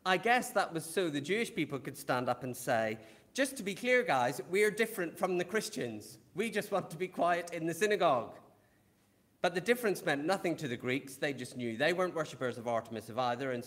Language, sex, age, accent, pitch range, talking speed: English, male, 40-59, British, 120-185 Hz, 225 wpm